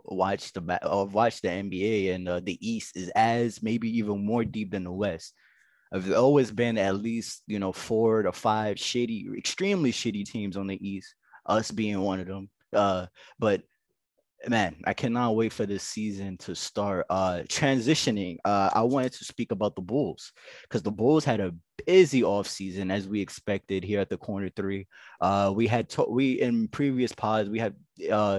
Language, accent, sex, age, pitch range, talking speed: English, American, male, 20-39, 100-120 Hz, 185 wpm